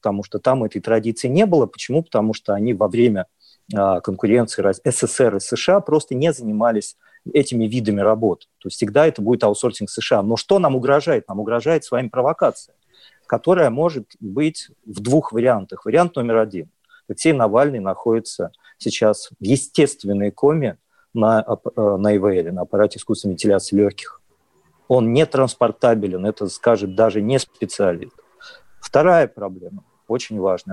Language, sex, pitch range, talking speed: Russian, male, 105-145 Hz, 145 wpm